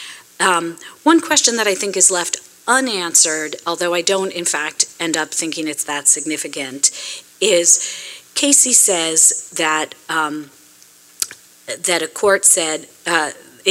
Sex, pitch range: female, 150-180 Hz